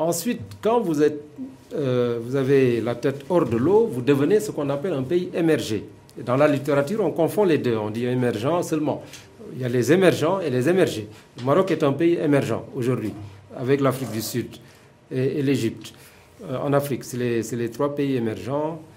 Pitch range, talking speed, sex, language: 120-160 Hz, 200 wpm, male, French